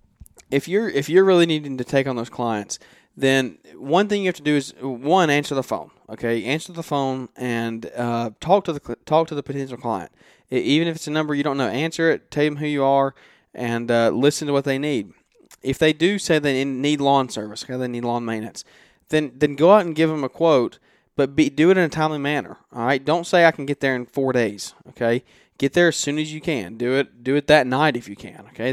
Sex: male